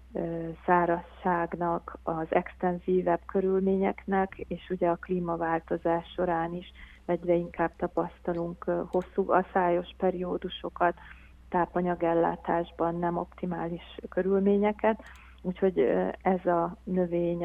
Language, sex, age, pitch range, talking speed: Hungarian, female, 30-49, 170-185 Hz, 85 wpm